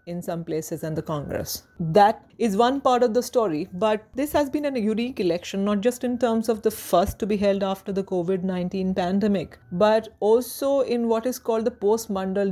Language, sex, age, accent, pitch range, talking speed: English, female, 40-59, Indian, 175-220 Hz, 200 wpm